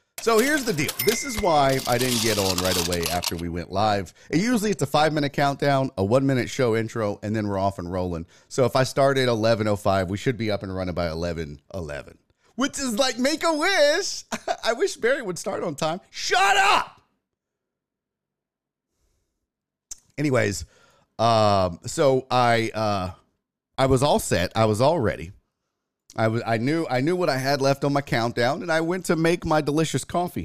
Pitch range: 100-150 Hz